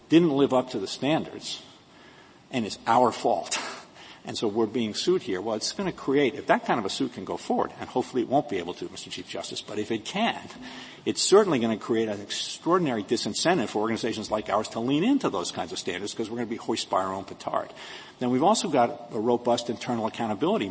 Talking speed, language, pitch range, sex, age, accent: 235 wpm, English, 110-140 Hz, male, 50-69, American